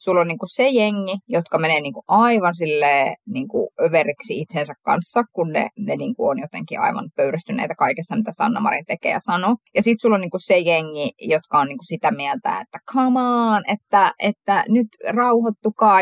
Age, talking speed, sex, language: 20-39, 175 wpm, female, Finnish